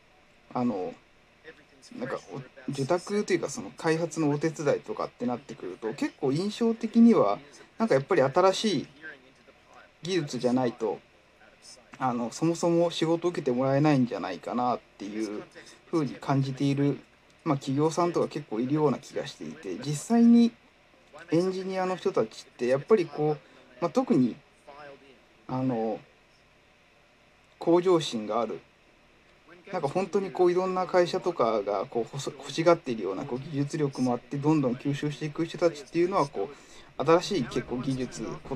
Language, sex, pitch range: Japanese, male, 135-190 Hz